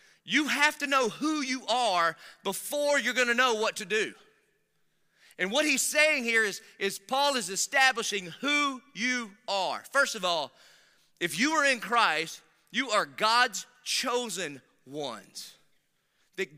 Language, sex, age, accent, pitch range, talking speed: English, male, 30-49, American, 165-255 Hz, 150 wpm